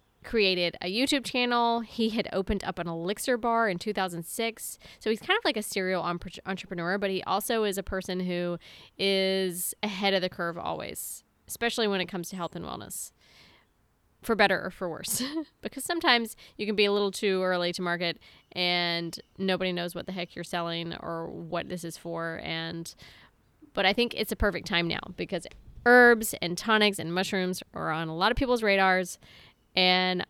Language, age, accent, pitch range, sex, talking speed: English, 20-39, American, 175-205 Hz, female, 185 wpm